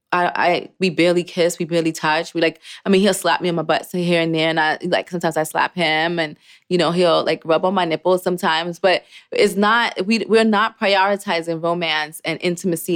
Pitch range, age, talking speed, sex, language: 165-195 Hz, 20-39, 220 wpm, female, English